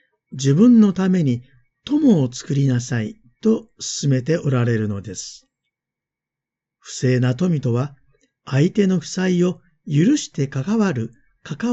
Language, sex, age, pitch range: Japanese, male, 50-69, 125-190 Hz